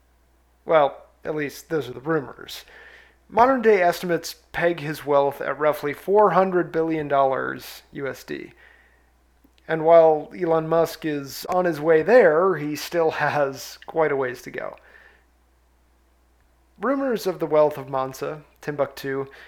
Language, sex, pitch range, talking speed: English, male, 135-175 Hz, 125 wpm